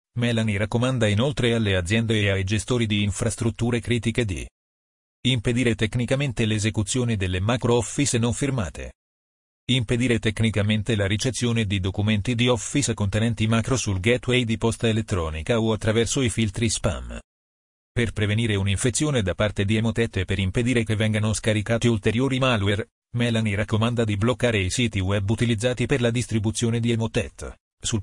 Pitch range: 105-120 Hz